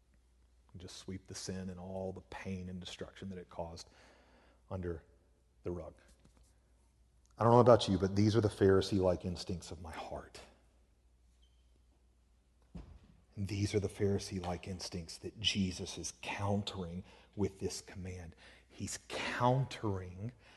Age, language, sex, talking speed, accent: 40-59, English, male, 135 wpm, American